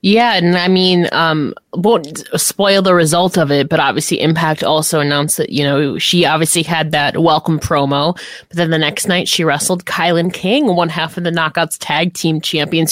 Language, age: English, 20-39